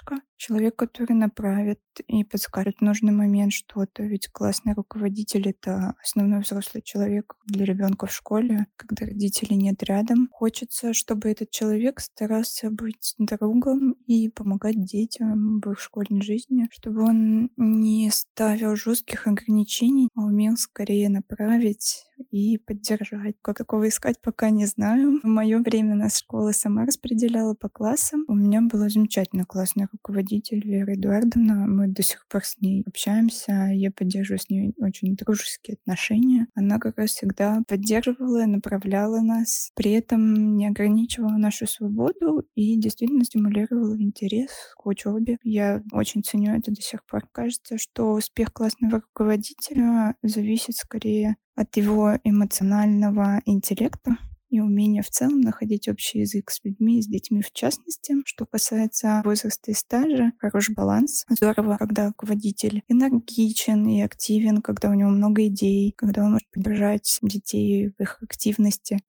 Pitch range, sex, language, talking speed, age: 205-230 Hz, female, Russian, 140 wpm, 20-39